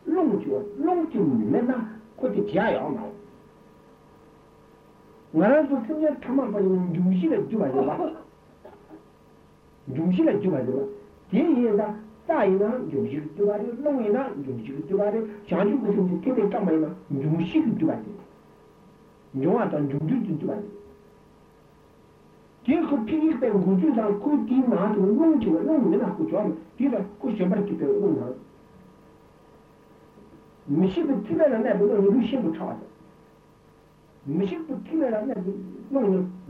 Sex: male